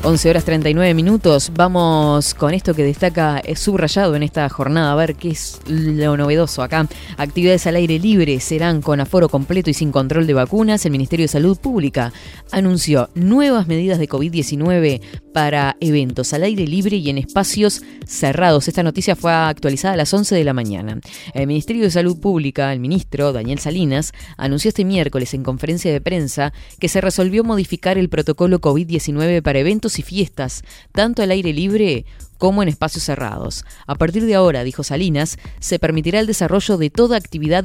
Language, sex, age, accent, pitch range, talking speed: Spanish, female, 20-39, Argentinian, 145-185 Hz, 175 wpm